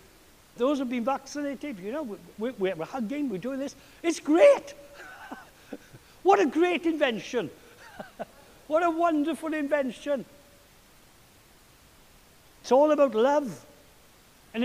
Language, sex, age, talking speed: English, male, 60-79, 110 wpm